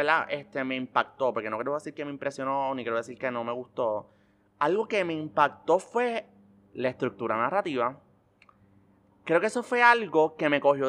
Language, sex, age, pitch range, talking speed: Spanish, male, 30-49, 135-200 Hz, 180 wpm